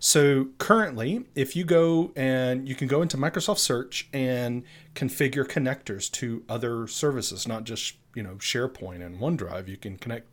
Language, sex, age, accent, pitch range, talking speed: English, male, 30-49, American, 115-150 Hz, 165 wpm